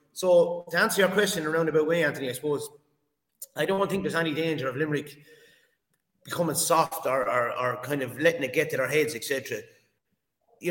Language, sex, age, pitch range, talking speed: English, male, 30-49, 145-180 Hz, 195 wpm